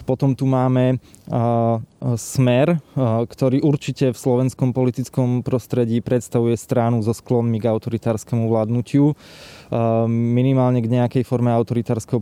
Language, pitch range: Slovak, 115-130 Hz